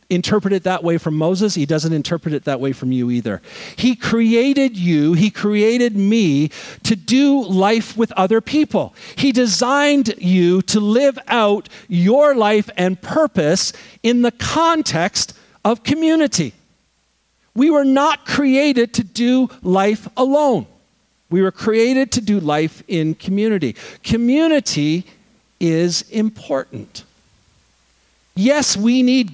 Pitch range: 170-250 Hz